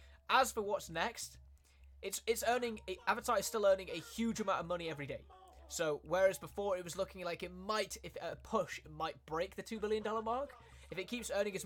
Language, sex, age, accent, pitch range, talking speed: Italian, male, 20-39, British, 140-190 Hz, 225 wpm